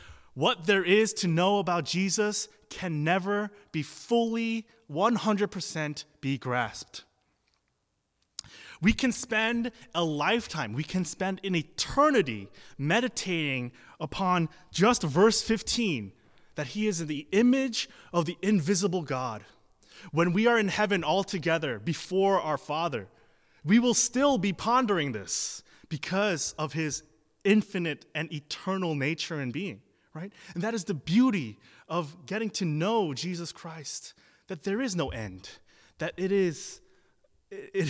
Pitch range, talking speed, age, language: 140-205 Hz, 130 wpm, 20-39, English